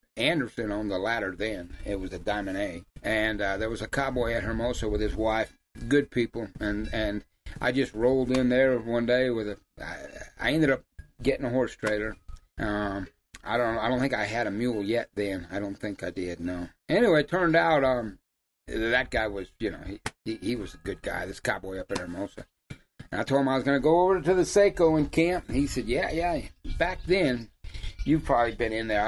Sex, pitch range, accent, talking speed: male, 95-125 Hz, American, 220 wpm